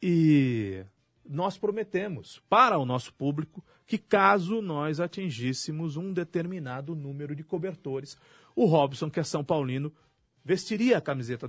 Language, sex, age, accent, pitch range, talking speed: Portuguese, male, 40-59, Brazilian, 125-185 Hz, 130 wpm